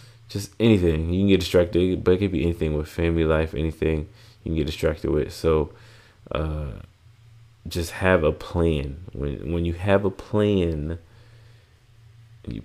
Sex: male